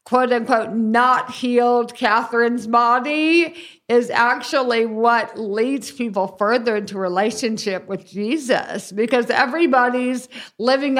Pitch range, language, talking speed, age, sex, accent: 215-260 Hz, English, 105 wpm, 50-69, female, American